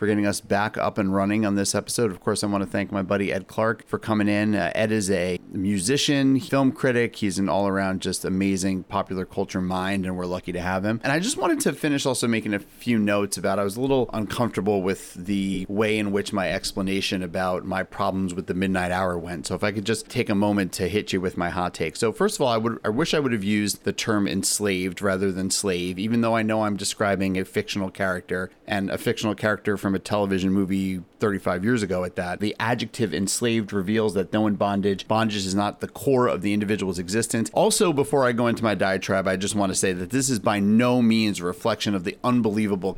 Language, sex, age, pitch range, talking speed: English, male, 30-49, 95-110 Hz, 240 wpm